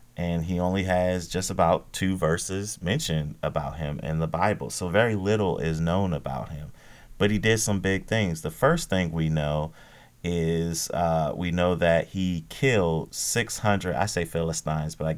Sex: male